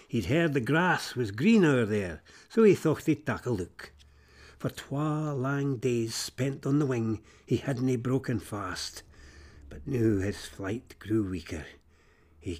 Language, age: English, 60-79